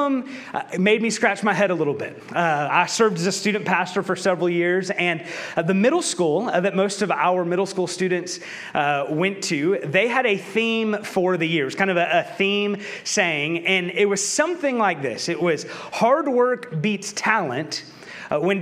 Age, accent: 30-49, American